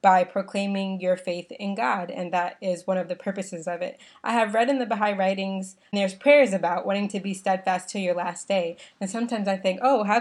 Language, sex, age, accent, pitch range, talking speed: English, female, 20-39, American, 190-220 Hz, 230 wpm